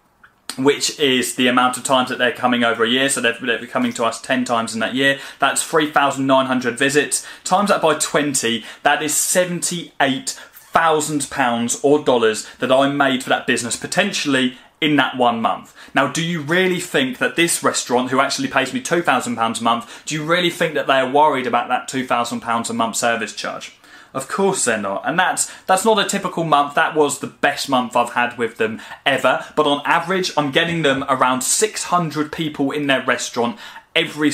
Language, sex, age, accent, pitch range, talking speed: English, male, 20-39, British, 125-155 Hz, 195 wpm